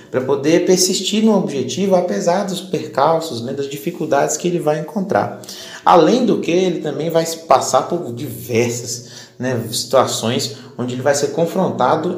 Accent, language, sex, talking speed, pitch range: Brazilian, Portuguese, male, 160 wpm, 125-185 Hz